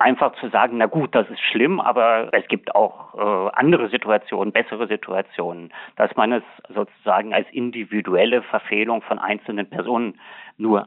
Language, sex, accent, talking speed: German, male, German, 155 wpm